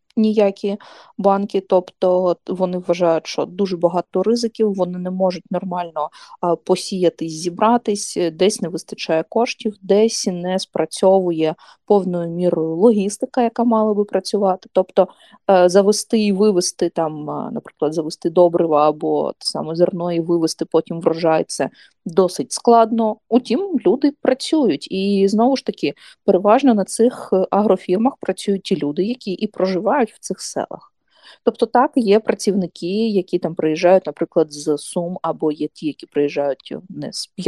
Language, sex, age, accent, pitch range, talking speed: Ukrainian, female, 20-39, native, 175-220 Hz, 130 wpm